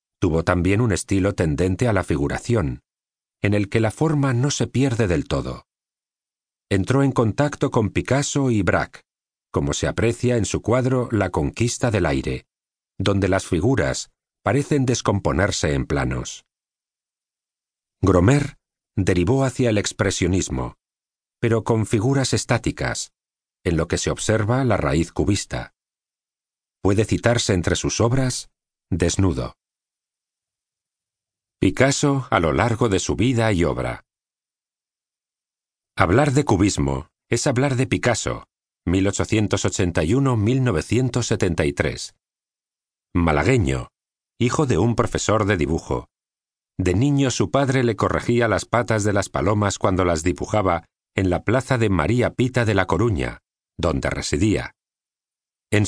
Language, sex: Spanish, male